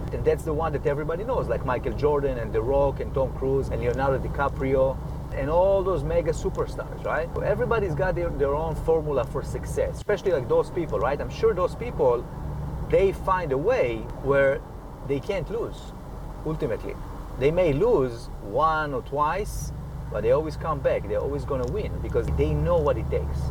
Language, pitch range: English, 135-190 Hz